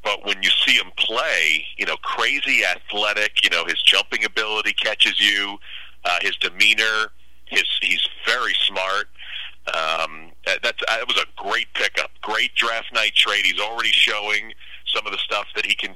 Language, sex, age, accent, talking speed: English, male, 40-59, American, 175 wpm